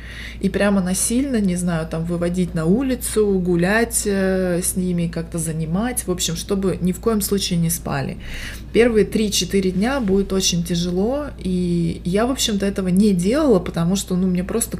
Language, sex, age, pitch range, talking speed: Russian, female, 20-39, 175-215 Hz, 165 wpm